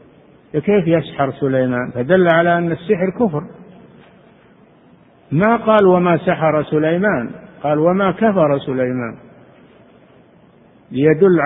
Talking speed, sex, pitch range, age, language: 95 wpm, male, 135-180 Hz, 50-69, Arabic